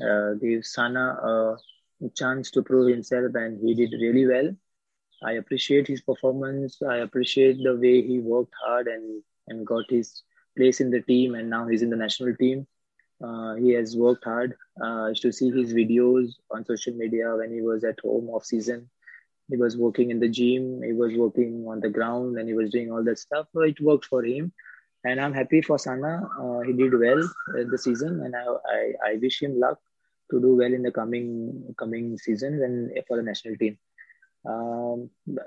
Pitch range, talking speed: 115-130 Hz, 195 wpm